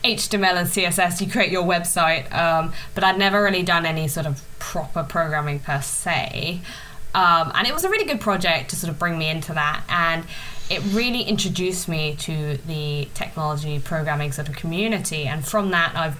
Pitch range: 155-190 Hz